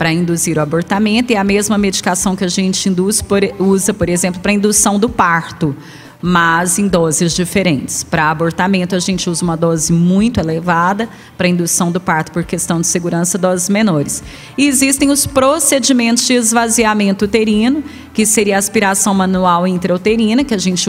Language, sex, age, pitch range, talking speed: Portuguese, female, 30-49, 180-225 Hz, 165 wpm